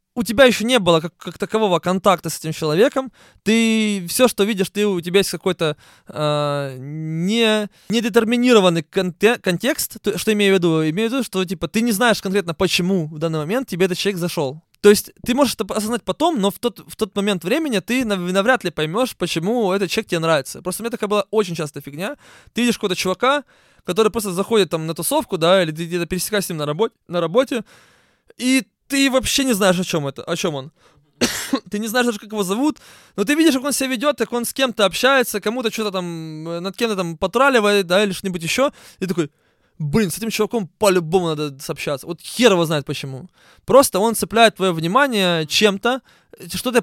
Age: 20-39